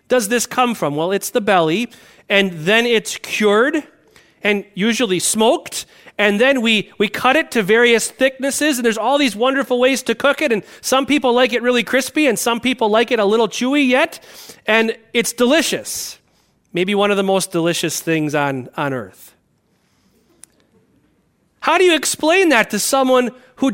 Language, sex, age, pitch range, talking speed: English, male, 30-49, 195-270 Hz, 175 wpm